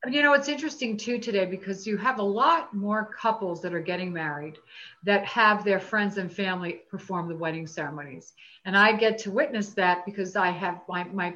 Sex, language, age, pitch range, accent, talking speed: female, English, 50-69, 180-255 Hz, American, 200 wpm